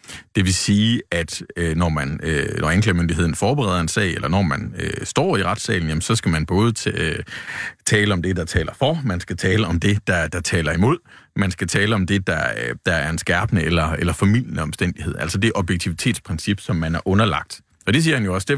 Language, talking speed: Danish, 205 wpm